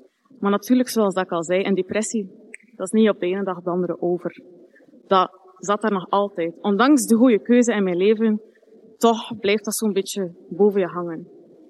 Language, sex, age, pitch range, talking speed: Dutch, female, 20-39, 195-235 Hz, 205 wpm